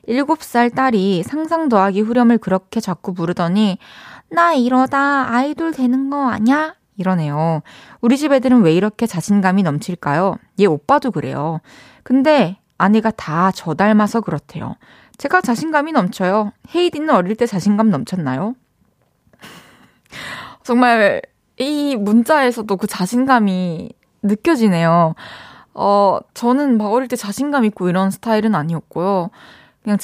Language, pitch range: Korean, 185-250 Hz